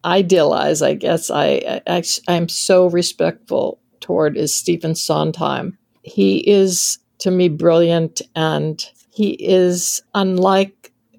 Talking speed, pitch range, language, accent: 115 wpm, 155-190 Hz, English, American